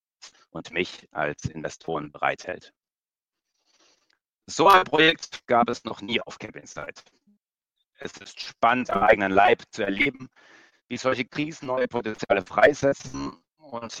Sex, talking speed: male, 130 wpm